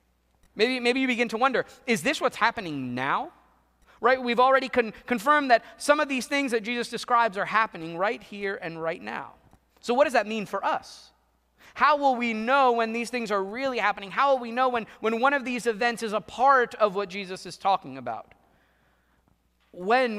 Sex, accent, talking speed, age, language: male, American, 200 wpm, 30-49, English